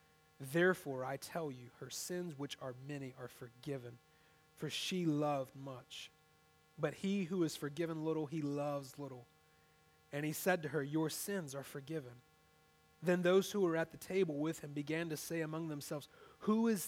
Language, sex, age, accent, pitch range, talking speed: English, male, 30-49, American, 150-195 Hz, 175 wpm